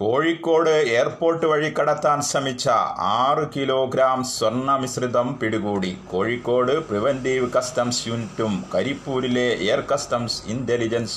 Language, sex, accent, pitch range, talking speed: Malayalam, male, native, 110-130 Hz, 95 wpm